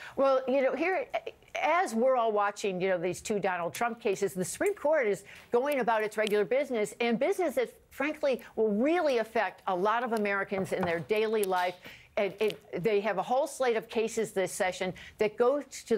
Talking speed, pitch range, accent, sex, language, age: 200 wpm, 195-230 Hz, American, female, English, 60-79